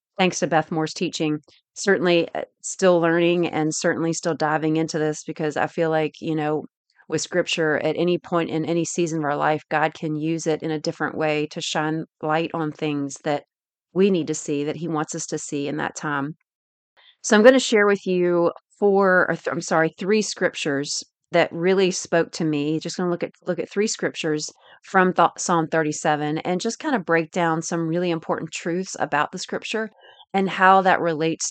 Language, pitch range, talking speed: English, 155-175 Hz, 200 wpm